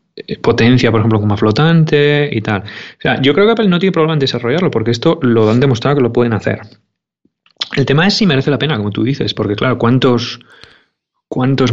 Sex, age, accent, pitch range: male, 30-49, Spanish, 110-140 Hz